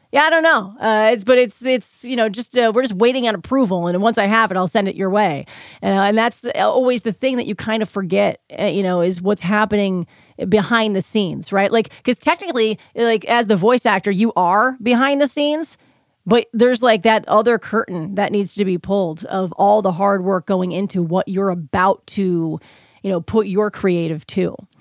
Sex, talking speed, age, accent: female, 220 wpm, 30-49, American